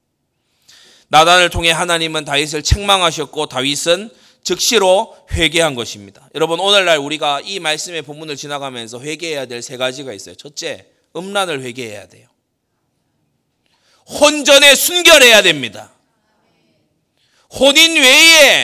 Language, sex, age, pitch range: Korean, male, 30-49, 155-265 Hz